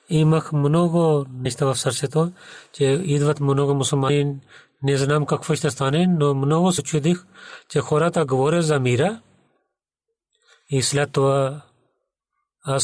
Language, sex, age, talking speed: Bulgarian, male, 40-59, 125 wpm